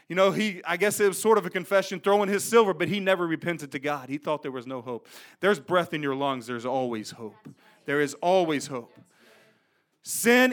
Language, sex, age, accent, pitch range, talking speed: English, male, 40-59, American, 150-215 Hz, 220 wpm